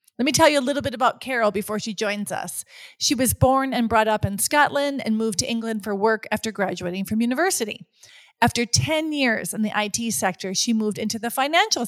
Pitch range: 210-275 Hz